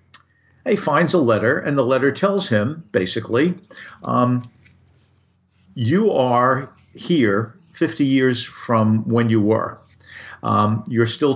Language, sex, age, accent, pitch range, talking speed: English, male, 50-69, American, 110-130 Hz, 120 wpm